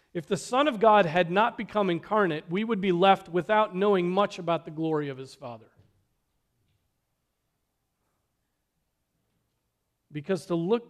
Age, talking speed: 40-59, 140 wpm